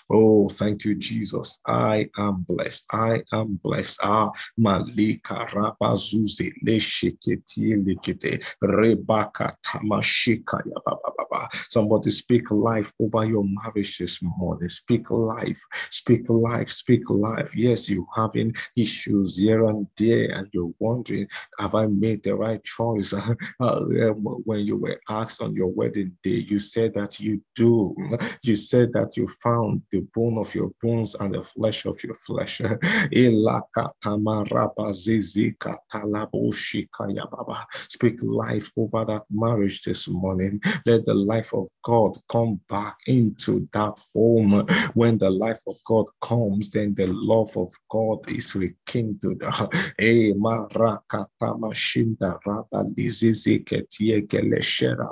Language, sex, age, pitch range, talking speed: English, male, 50-69, 100-115 Hz, 110 wpm